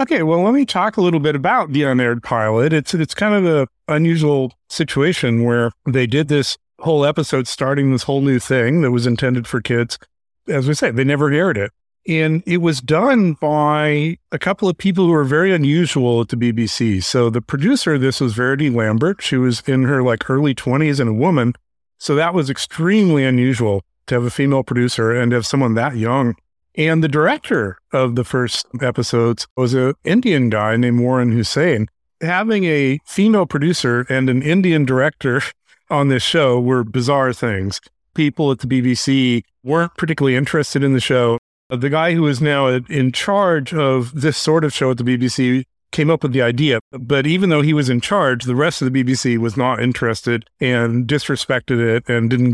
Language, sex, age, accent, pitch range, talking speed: English, male, 50-69, American, 120-155 Hz, 195 wpm